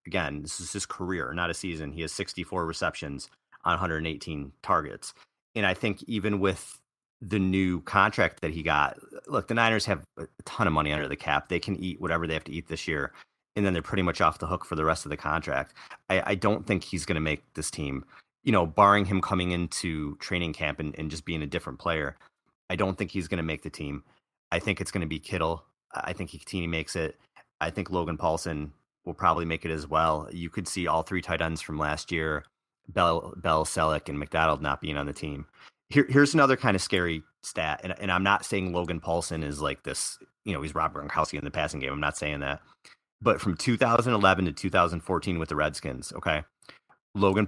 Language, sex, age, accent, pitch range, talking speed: English, male, 30-49, American, 75-95 Hz, 225 wpm